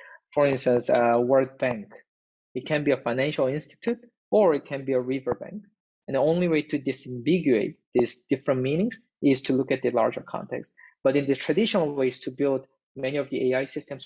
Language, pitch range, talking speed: English, 130-160 Hz, 195 wpm